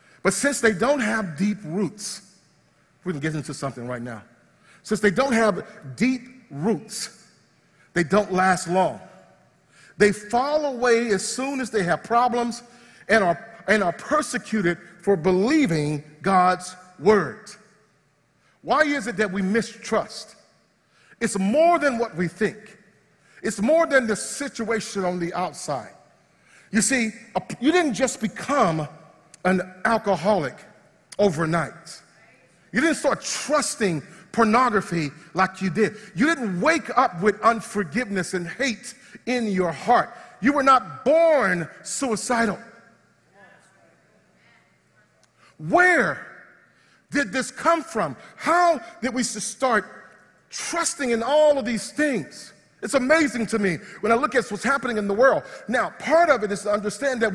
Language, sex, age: English, male, 40-59